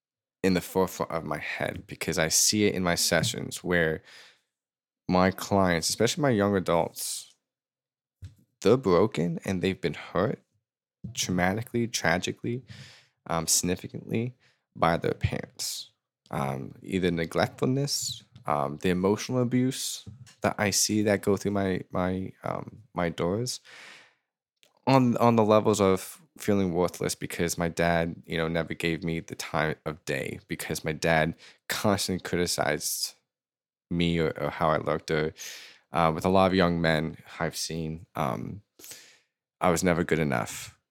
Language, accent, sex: English, American, male